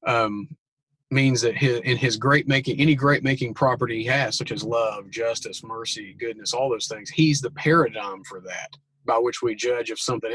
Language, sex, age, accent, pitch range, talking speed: English, male, 40-59, American, 125-155 Hz, 195 wpm